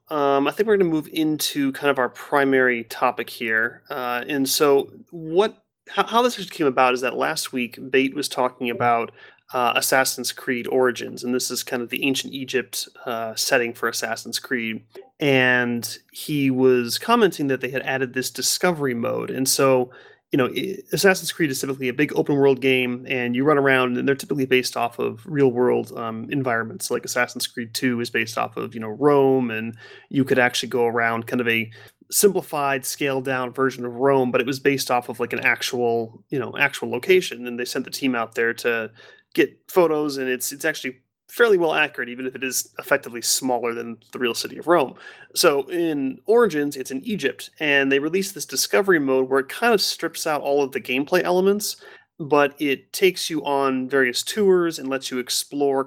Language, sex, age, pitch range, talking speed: English, male, 30-49, 125-155 Hz, 200 wpm